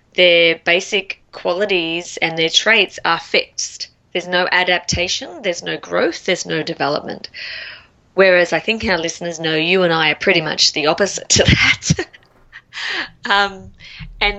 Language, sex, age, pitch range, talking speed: English, female, 20-39, 170-220 Hz, 145 wpm